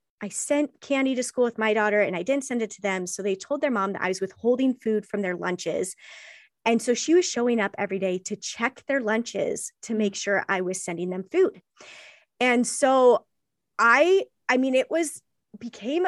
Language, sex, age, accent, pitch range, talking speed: English, female, 20-39, American, 200-250 Hz, 210 wpm